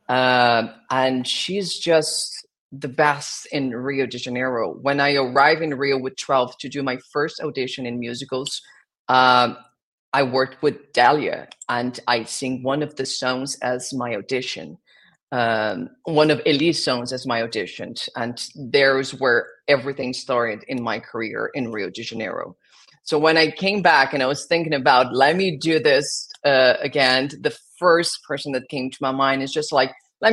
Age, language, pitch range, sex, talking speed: 40-59, English, 130-160 Hz, female, 170 wpm